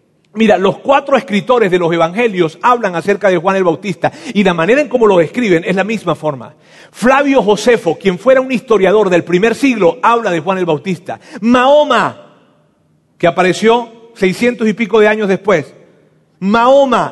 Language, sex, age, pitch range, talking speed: Spanish, male, 40-59, 180-240 Hz, 170 wpm